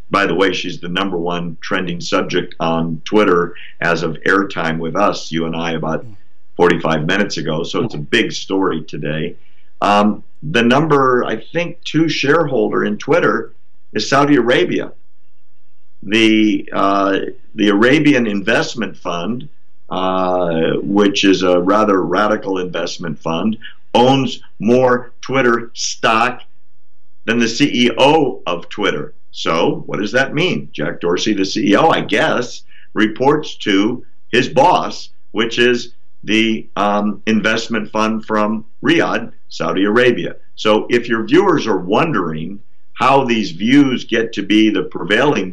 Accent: American